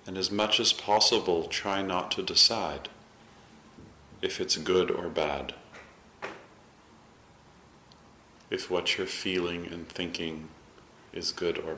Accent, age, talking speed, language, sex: American, 40-59, 115 wpm, English, male